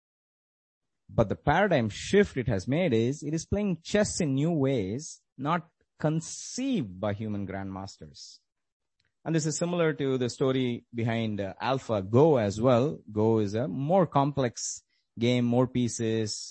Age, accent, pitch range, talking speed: 30-49, Indian, 95-130 Hz, 150 wpm